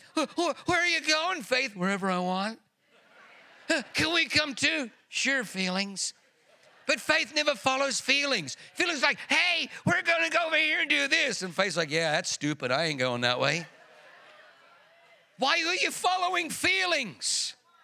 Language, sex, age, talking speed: English, male, 50-69, 160 wpm